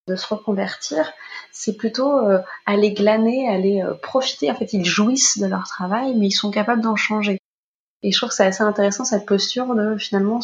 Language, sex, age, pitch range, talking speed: French, female, 20-39, 185-225 Hz, 200 wpm